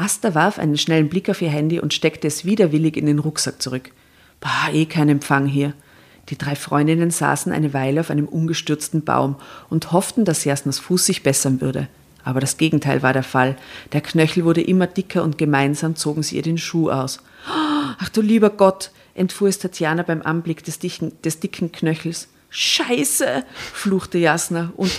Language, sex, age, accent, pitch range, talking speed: German, female, 40-59, German, 145-180 Hz, 180 wpm